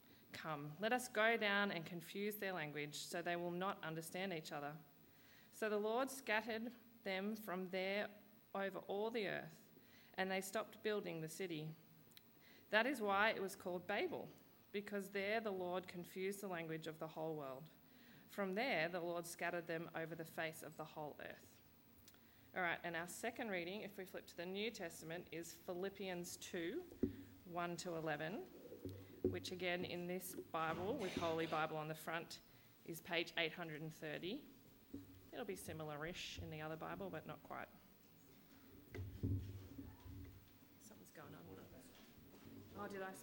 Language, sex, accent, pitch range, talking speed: English, female, Australian, 160-215 Hz, 150 wpm